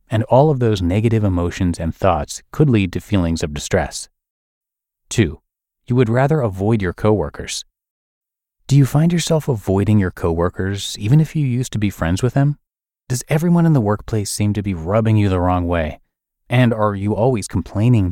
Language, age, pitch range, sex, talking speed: English, 30-49, 90-125 Hz, male, 180 wpm